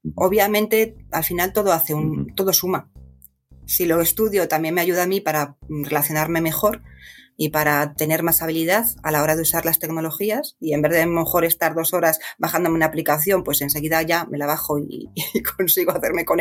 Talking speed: 195 wpm